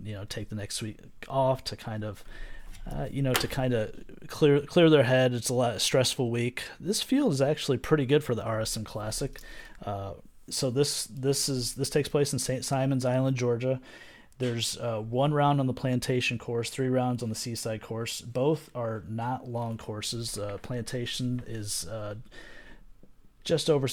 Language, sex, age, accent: English, male, 30-49, American